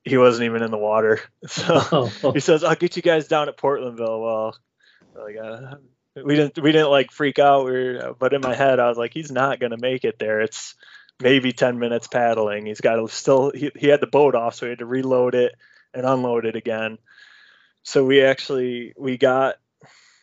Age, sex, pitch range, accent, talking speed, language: 20-39, male, 115-130 Hz, American, 205 wpm, English